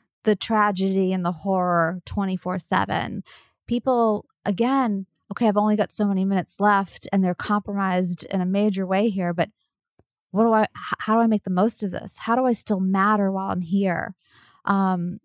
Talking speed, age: 185 wpm, 20-39